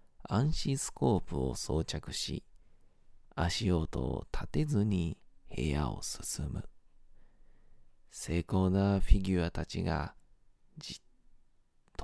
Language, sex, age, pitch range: Japanese, male, 40-59, 85-105 Hz